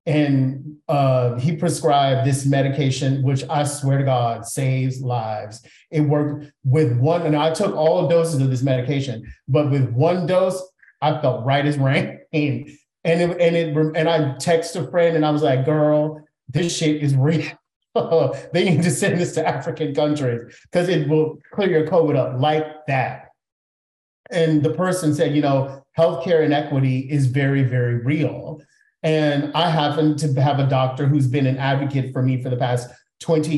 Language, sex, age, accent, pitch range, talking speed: English, male, 30-49, American, 135-160 Hz, 175 wpm